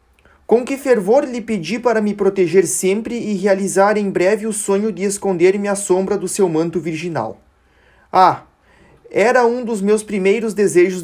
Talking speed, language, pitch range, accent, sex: 165 wpm, Portuguese, 170-210 Hz, Brazilian, male